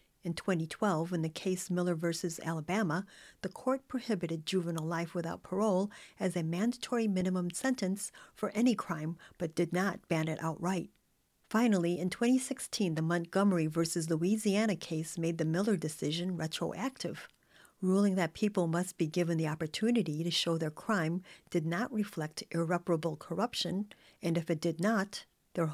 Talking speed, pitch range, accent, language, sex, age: 150 wpm, 165-200 Hz, American, English, female, 50-69